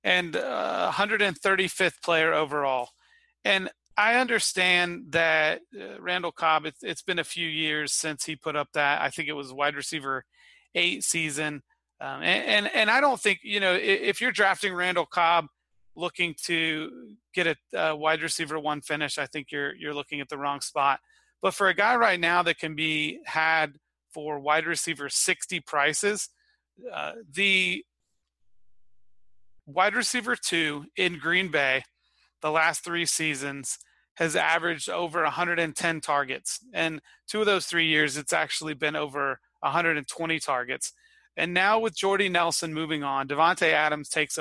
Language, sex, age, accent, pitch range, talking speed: English, male, 30-49, American, 150-180 Hz, 160 wpm